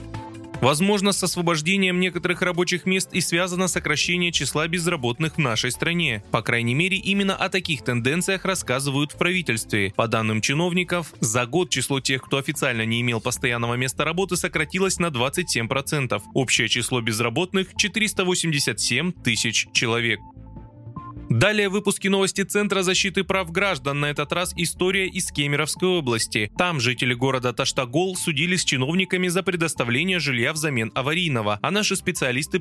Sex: male